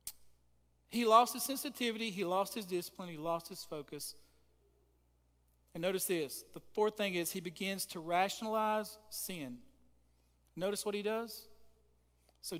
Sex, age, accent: male, 40-59, American